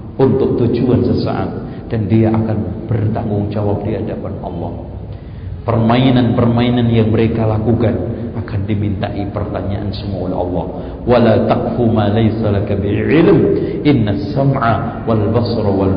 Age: 50-69